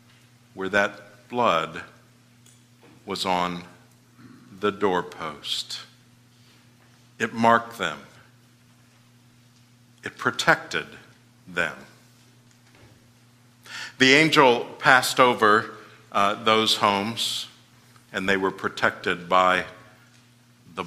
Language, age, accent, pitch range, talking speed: English, 60-79, American, 105-120 Hz, 75 wpm